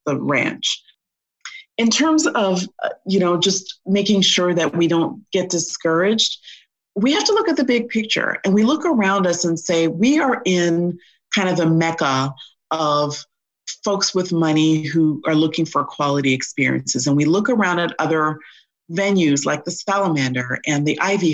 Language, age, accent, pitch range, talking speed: English, 40-59, American, 155-185 Hz, 165 wpm